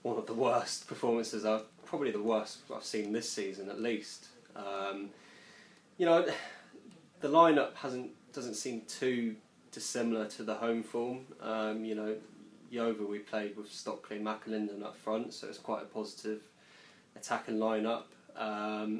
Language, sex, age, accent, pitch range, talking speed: English, male, 20-39, British, 105-115 Hz, 160 wpm